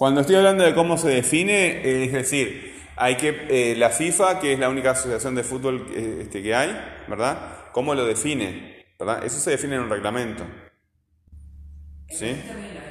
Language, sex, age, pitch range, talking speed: Spanish, male, 30-49, 115-145 Hz, 165 wpm